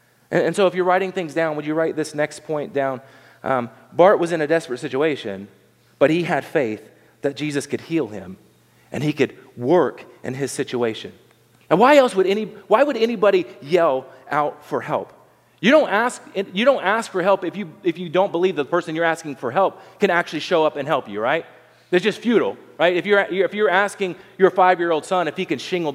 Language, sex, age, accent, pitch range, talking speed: English, male, 30-49, American, 155-200 Hz, 215 wpm